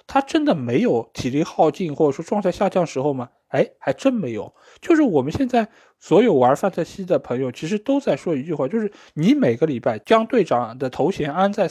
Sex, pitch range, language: male, 150-245 Hz, Chinese